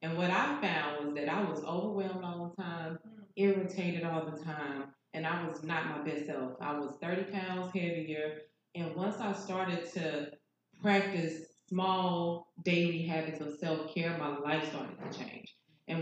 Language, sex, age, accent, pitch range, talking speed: English, female, 20-39, American, 150-175 Hz, 170 wpm